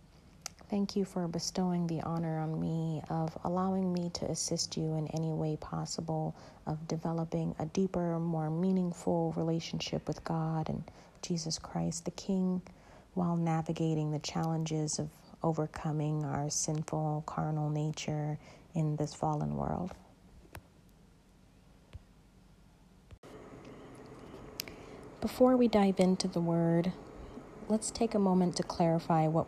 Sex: female